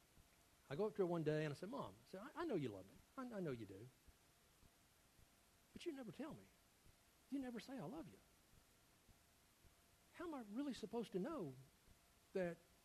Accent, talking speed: American, 190 wpm